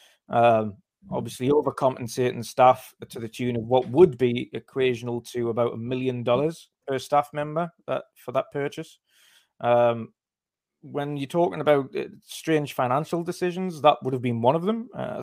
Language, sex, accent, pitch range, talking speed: English, male, British, 115-140 Hz, 160 wpm